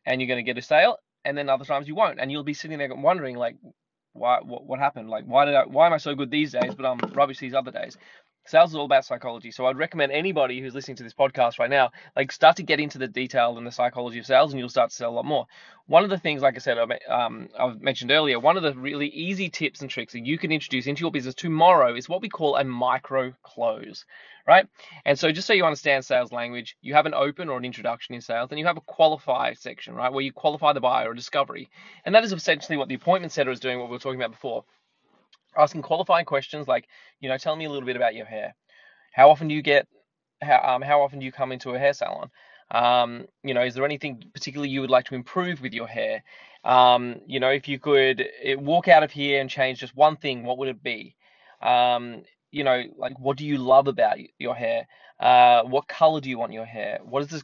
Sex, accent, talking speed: male, Australian, 255 wpm